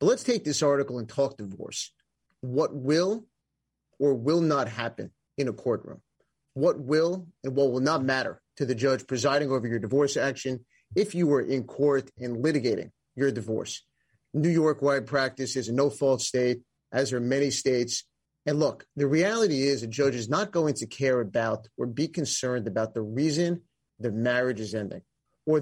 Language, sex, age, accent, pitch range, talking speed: English, male, 30-49, American, 125-150 Hz, 180 wpm